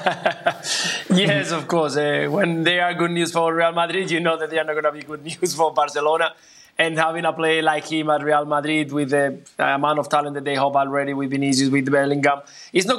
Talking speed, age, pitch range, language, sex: 230 wpm, 20-39, 145-165 Hz, English, male